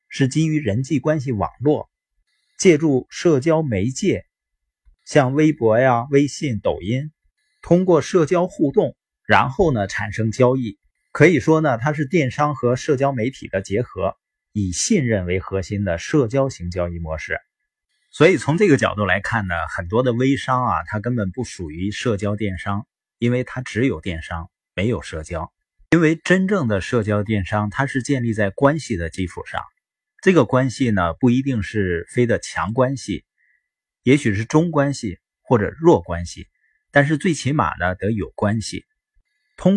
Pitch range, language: 100-150 Hz, Chinese